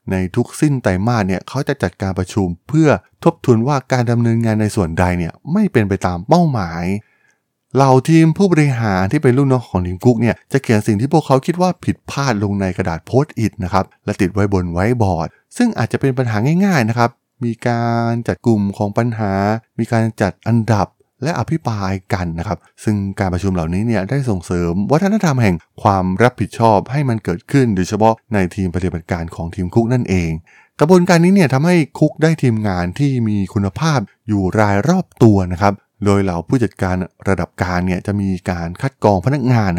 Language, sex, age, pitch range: Thai, male, 20-39, 95-130 Hz